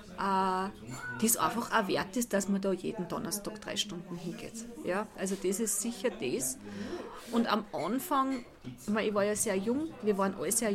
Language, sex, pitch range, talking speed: German, female, 185-220 Hz, 190 wpm